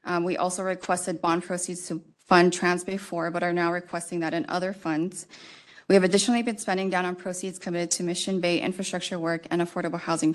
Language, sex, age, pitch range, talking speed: English, female, 20-39, 170-190 Hz, 205 wpm